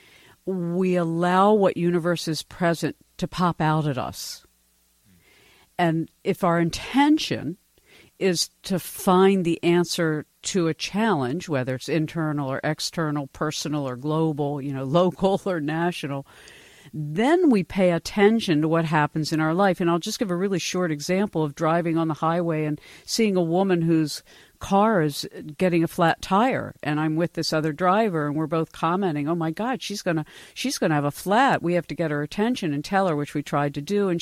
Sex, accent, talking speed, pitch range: female, American, 185 wpm, 150-185 Hz